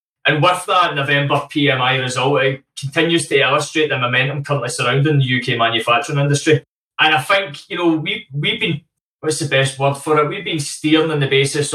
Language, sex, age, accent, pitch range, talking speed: English, male, 20-39, British, 135-150 Hz, 190 wpm